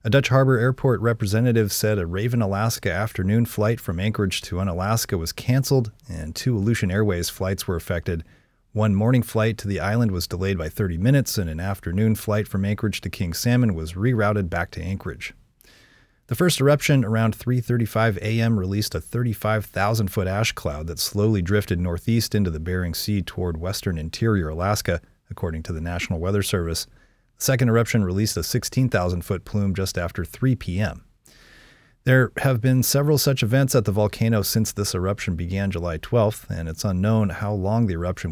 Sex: male